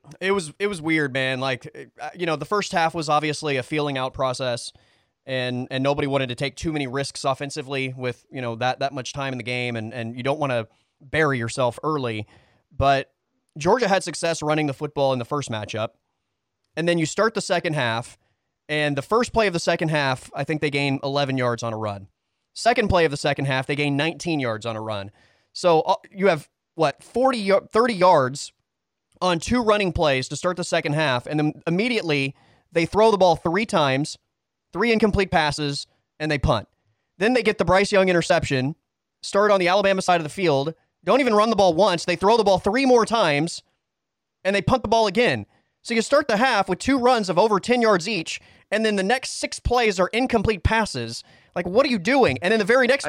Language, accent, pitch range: English, American, 135-200 Hz